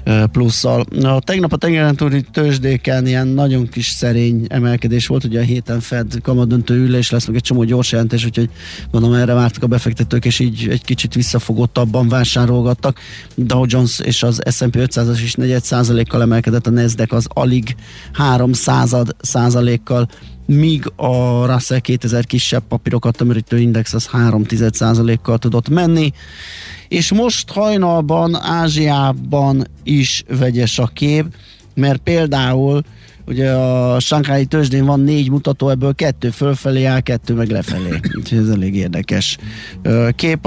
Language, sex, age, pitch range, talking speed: Hungarian, male, 30-49, 115-135 Hz, 135 wpm